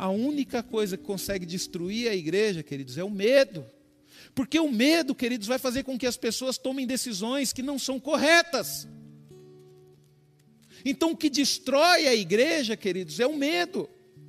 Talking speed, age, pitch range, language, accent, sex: 160 wpm, 40-59, 190-270 Hz, Portuguese, Brazilian, male